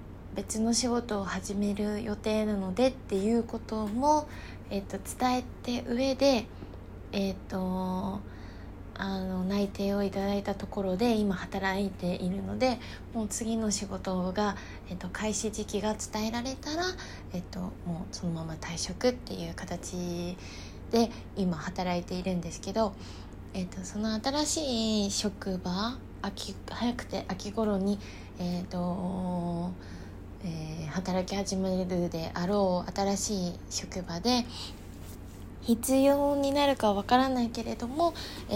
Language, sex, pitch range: Japanese, female, 155-220 Hz